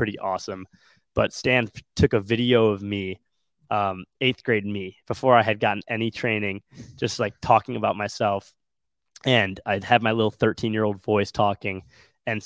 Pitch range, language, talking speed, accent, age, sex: 100-115 Hz, English, 170 wpm, American, 20-39, male